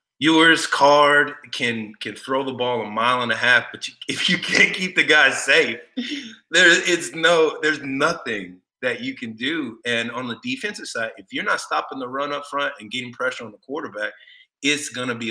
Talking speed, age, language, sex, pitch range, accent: 210 wpm, 30-49, English, male, 105-140 Hz, American